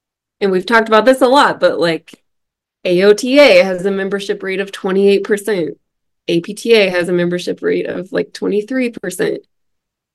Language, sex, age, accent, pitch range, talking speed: English, female, 20-39, American, 175-210 Hz, 140 wpm